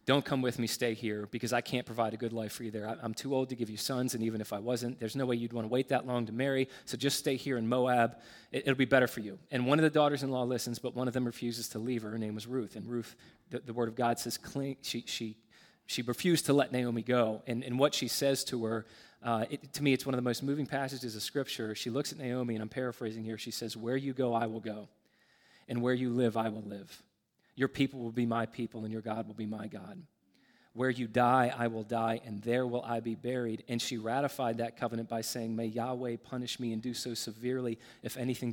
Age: 30-49